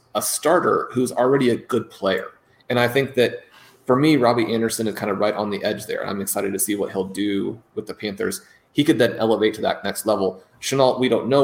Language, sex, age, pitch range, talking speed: English, male, 30-49, 100-120 Hz, 235 wpm